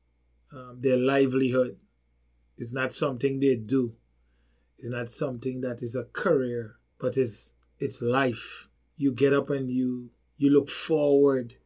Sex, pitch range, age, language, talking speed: male, 125-150 Hz, 20-39, English, 140 wpm